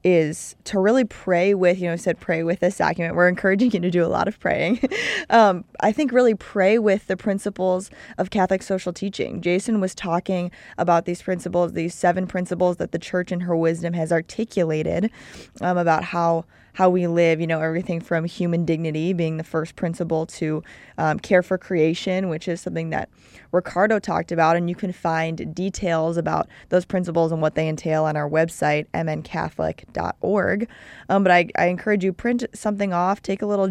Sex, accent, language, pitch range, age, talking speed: female, American, English, 165-185 Hz, 20-39, 195 wpm